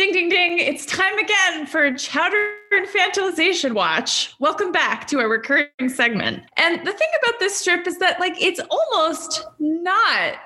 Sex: female